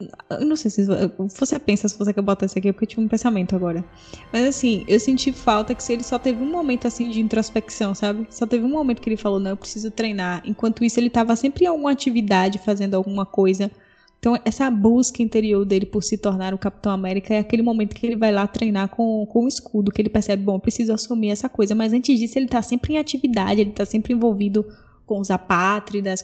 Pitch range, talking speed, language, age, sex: 200-240 Hz, 240 wpm, Portuguese, 10-29, female